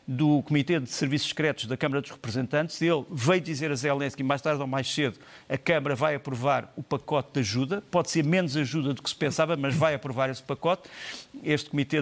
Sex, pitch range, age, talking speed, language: male, 130-150 Hz, 50-69, 215 wpm, Portuguese